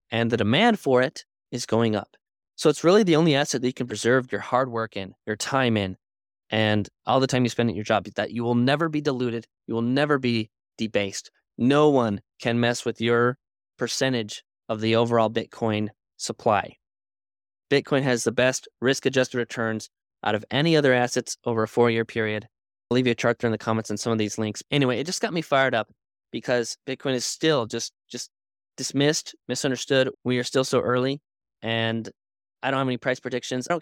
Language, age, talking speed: English, 20-39, 205 wpm